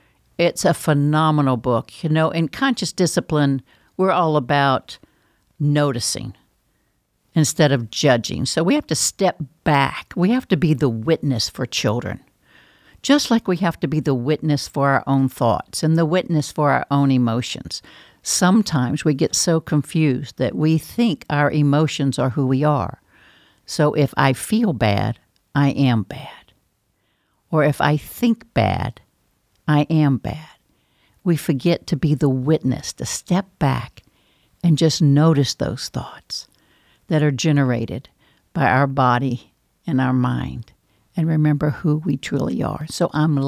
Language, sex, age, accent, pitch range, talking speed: English, female, 60-79, American, 135-165 Hz, 150 wpm